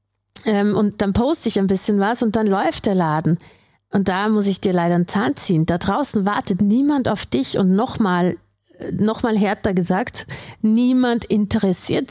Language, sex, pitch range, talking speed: German, female, 180-240 Hz, 175 wpm